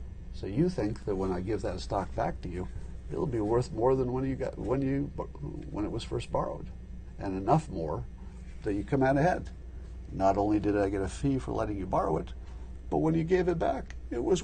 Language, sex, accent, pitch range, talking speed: English, male, American, 70-120 Hz, 230 wpm